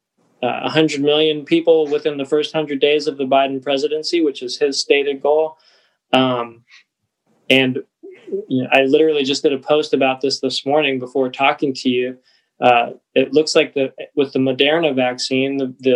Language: English